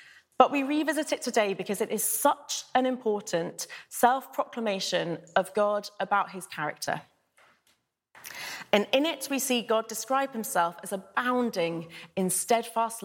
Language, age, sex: English, 30-49, female